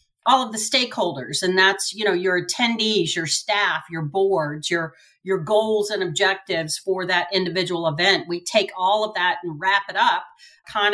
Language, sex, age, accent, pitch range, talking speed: English, female, 40-59, American, 180-220 Hz, 180 wpm